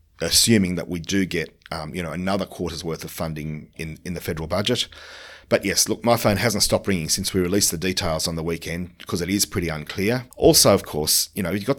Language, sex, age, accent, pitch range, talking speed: English, male, 40-59, Australian, 85-110 Hz, 235 wpm